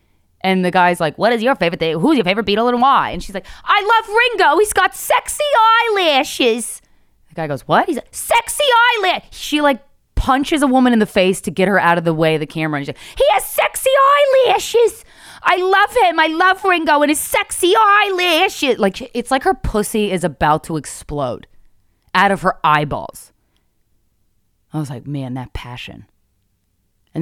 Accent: American